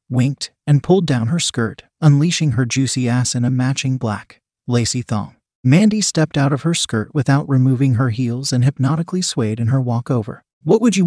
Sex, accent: male, American